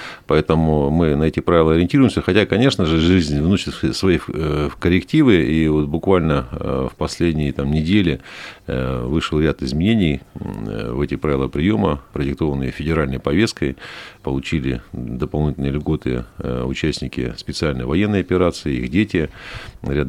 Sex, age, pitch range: male, 40-59, 70-85 Hz